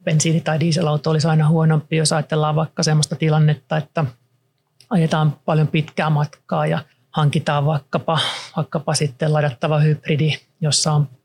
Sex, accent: male, native